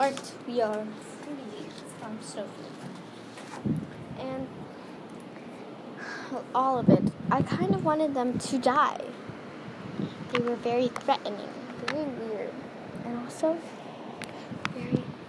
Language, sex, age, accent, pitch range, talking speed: English, female, 10-29, American, 225-290 Hz, 100 wpm